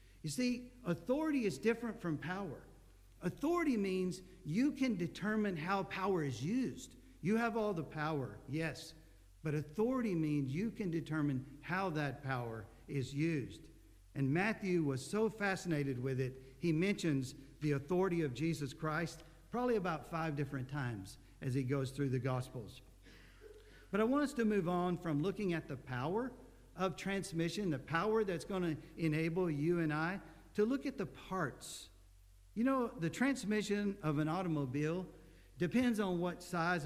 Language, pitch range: English, 140-190 Hz